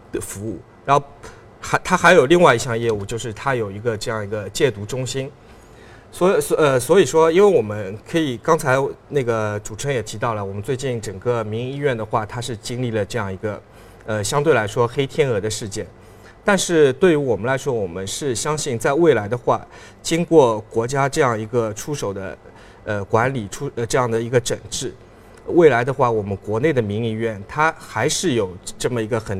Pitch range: 110-135 Hz